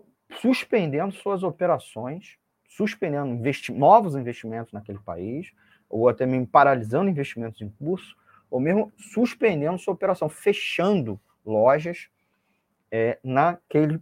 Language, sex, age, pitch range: Portuguese, male, 30-49, 115-170 Hz